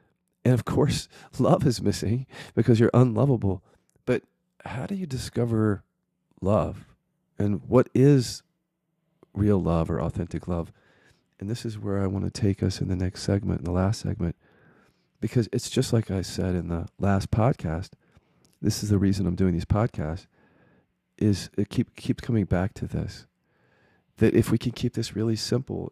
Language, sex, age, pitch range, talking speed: English, male, 40-59, 95-115 Hz, 170 wpm